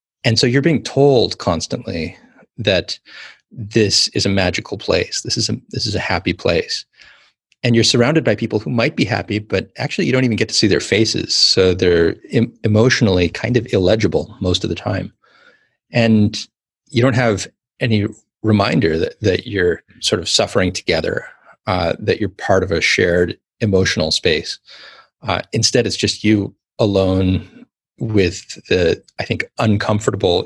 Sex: male